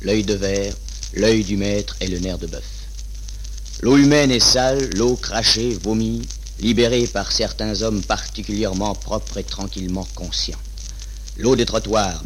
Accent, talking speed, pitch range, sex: French, 145 wpm, 95-115 Hz, male